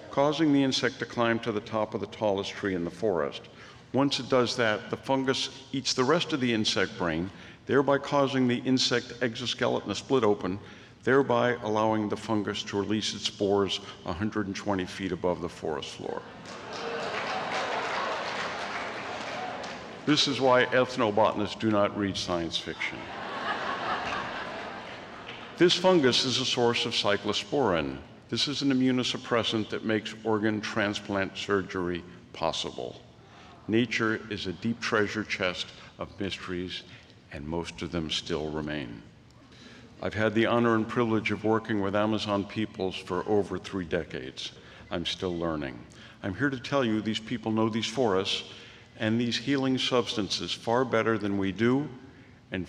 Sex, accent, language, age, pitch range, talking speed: male, American, English, 50-69, 95-120 Hz, 145 wpm